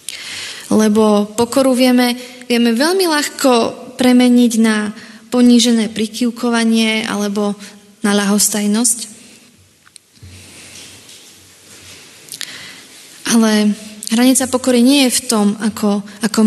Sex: female